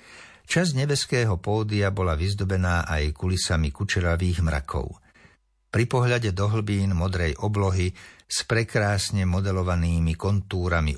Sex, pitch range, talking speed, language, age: male, 85-115 Hz, 105 wpm, Slovak, 60-79